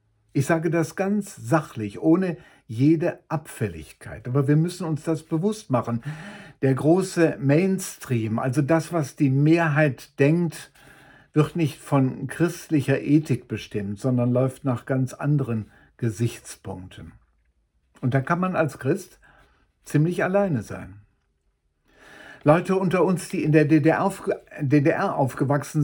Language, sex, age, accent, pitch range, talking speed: German, male, 50-69, German, 125-160 Hz, 125 wpm